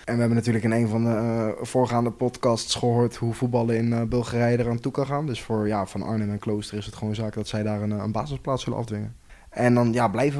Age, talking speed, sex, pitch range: 20-39, 250 wpm, male, 115-125 Hz